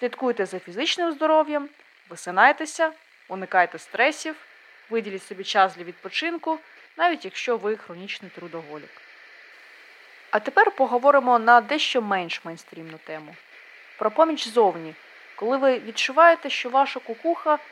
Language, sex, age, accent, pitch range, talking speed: Ukrainian, female, 20-39, native, 195-275 Hz, 115 wpm